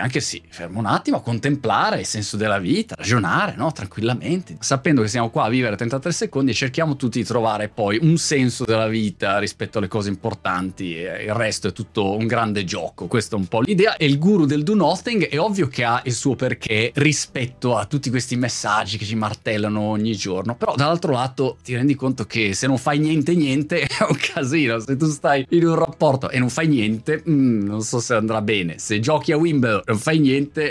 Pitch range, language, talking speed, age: 110-145 Hz, Italian, 215 wpm, 20-39